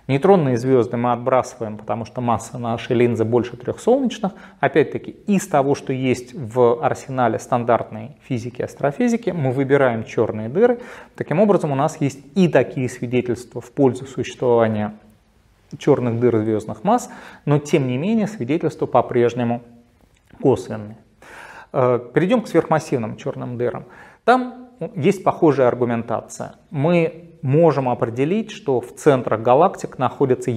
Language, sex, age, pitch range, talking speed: Russian, male, 30-49, 120-160 Hz, 125 wpm